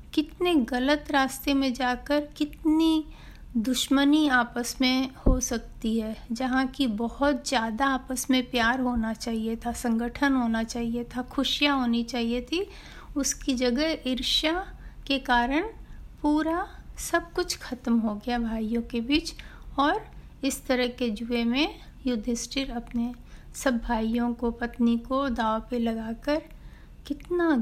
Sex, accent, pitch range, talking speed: female, native, 235-275 Hz, 135 wpm